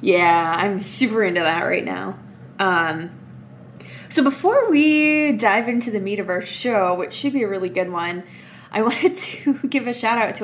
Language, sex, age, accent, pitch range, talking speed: English, female, 20-39, American, 185-245 Hz, 185 wpm